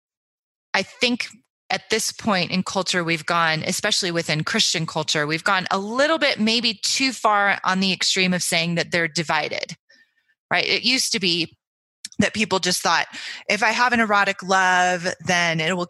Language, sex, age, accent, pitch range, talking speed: English, female, 20-39, American, 170-215 Hz, 175 wpm